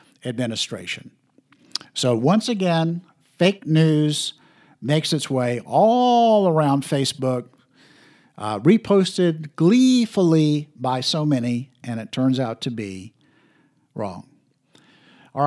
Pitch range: 135-185 Hz